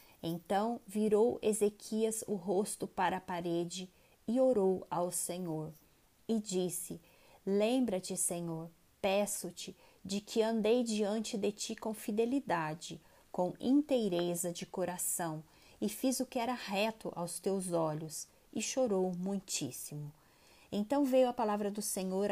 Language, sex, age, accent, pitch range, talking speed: Portuguese, female, 20-39, Brazilian, 180-220 Hz, 125 wpm